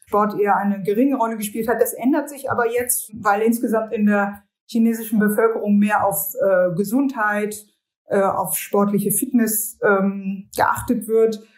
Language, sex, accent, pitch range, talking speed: German, female, German, 195-225 Hz, 145 wpm